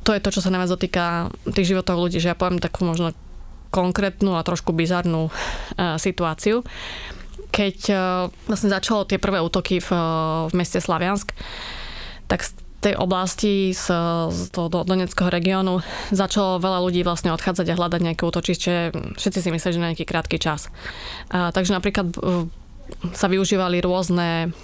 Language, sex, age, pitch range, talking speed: Slovak, female, 20-39, 170-190 Hz, 145 wpm